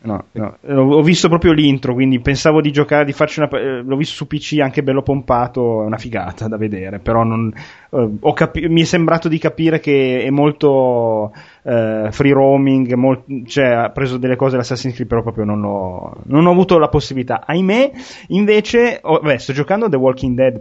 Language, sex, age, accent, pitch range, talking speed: Italian, male, 30-49, native, 120-155 Hz, 190 wpm